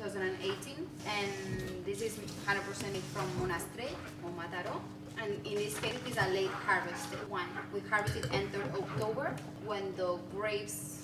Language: Finnish